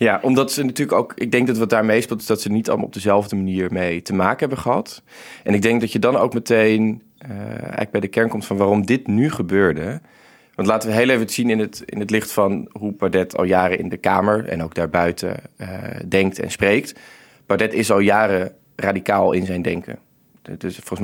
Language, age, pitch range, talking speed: Dutch, 20-39, 90-105 Hz, 230 wpm